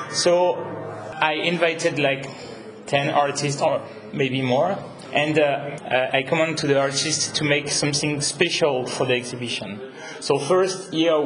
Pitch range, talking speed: 130-155 Hz, 145 wpm